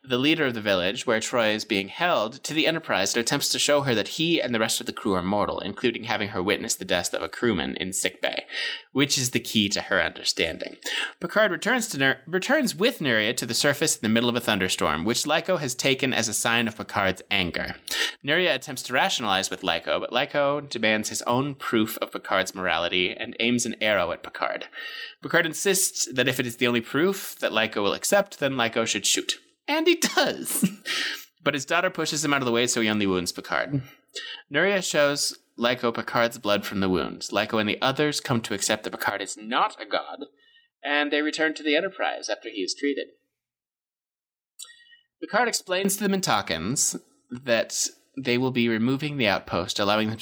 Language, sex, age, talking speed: English, male, 20-39, 205 wpm